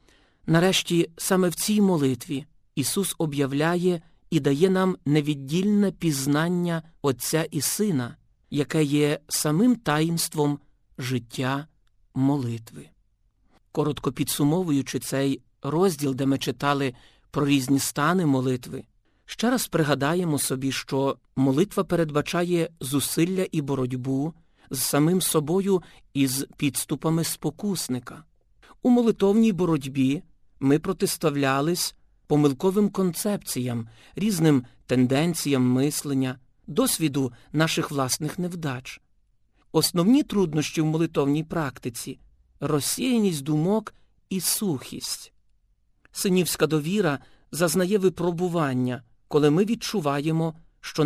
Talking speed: 95 wpm